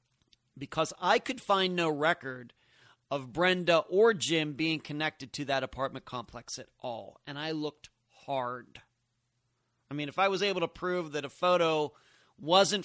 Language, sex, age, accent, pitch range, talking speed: English, male, 30-49, American, 125-150 Hz, 160 wpm